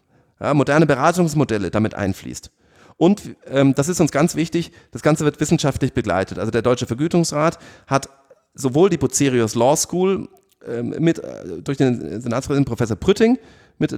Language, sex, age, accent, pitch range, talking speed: German, male, 40-59, German, 120-155 Hz, 150 wpm